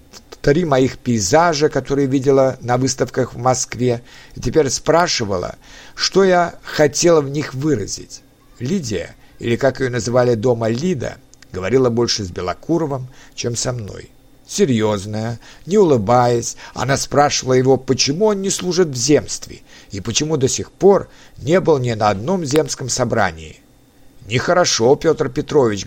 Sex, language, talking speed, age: male, Russian, 135 wpm, 60-79